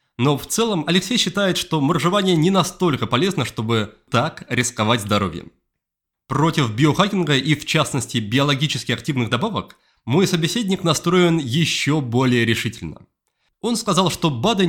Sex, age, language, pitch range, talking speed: male, 20-39, Russian, 125-180 Hz, 130 wpm